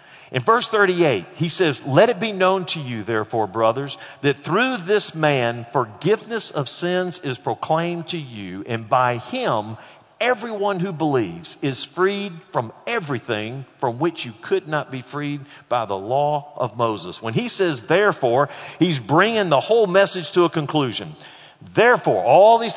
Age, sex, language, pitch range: 50-69, male, English, 130-195 Hz